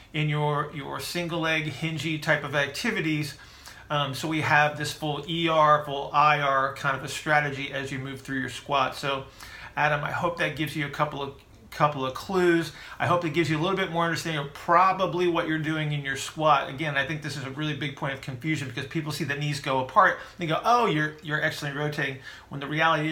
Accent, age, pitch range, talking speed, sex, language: American, 40-59, 140-160 Hz, 225 wpm, male, English